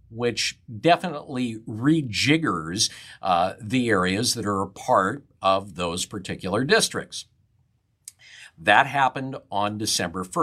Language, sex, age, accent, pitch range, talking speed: English, male, 50-69, American, 100-150 Hz, 105 wpm